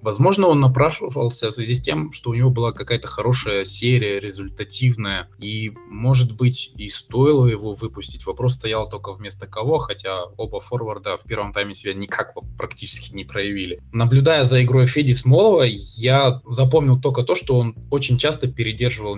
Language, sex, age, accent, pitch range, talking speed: Russian, male, 20-39, native, 100-130 Hz, 165 wpm